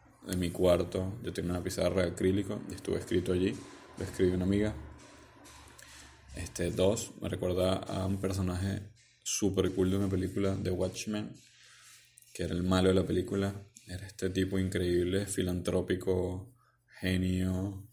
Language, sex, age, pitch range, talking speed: Spanish, male, 20-39, 90-100 Hz, 145 wpm